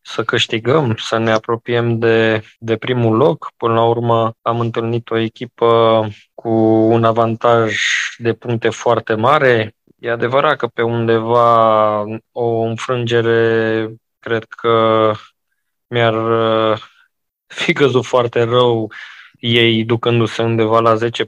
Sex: male